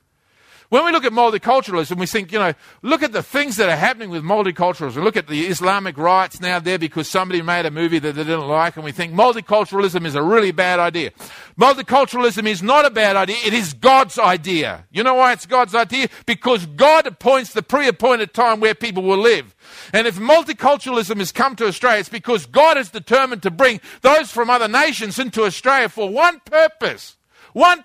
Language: English